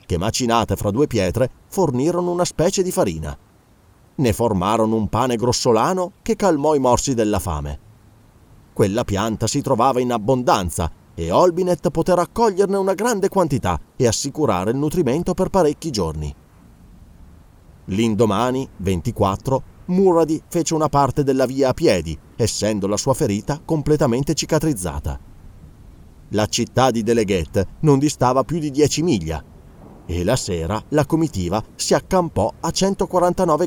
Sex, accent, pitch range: male, native, 100-150 Hz